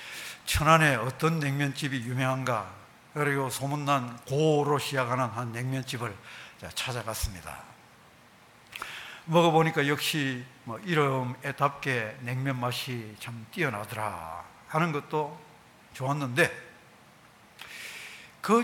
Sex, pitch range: male, 130-175 Hz